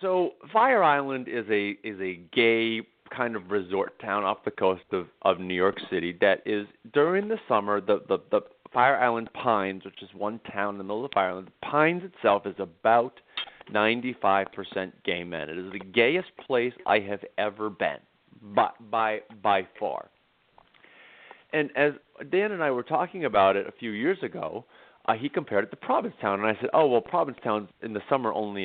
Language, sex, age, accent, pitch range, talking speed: English, male, 40-59, American, 100-135 Hz, 195 wpm